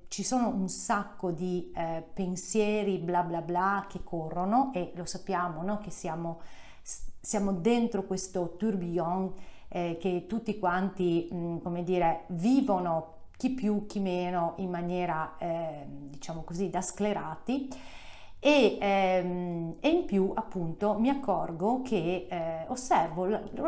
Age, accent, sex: 40-59, native, female